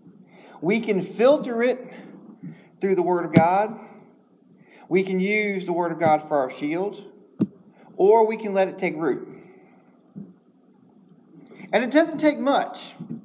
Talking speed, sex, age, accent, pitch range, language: 140 wpm, male, 40-59, American, 185-245 Hz, English